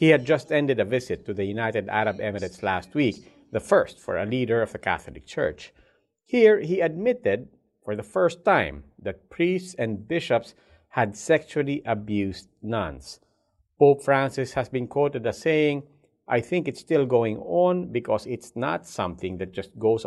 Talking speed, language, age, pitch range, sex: 170 wpm, English, 50-69, 115-150 Hz, male